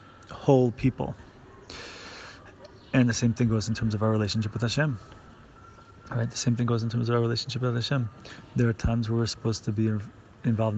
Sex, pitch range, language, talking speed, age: male, 110-125 Hz, English, 195 wpm, 30-49